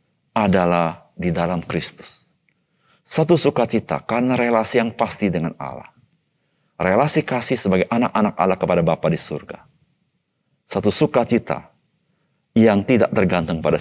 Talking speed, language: 115 wpm, Indonesian